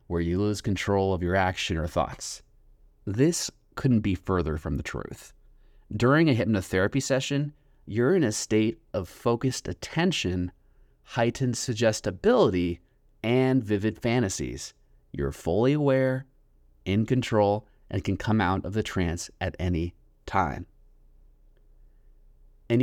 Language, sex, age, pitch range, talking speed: English, male, 30-49, 90-125 Hz, 125 wpm